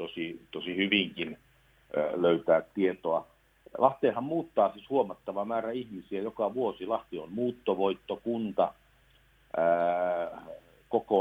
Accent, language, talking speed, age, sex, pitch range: native, Finnish, 90 wpm, 50-69, male, 85-110 Hz